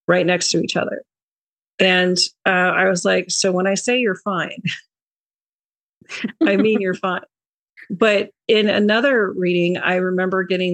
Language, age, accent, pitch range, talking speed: English, 40-59, American, 165-185 Hz, 150 wpm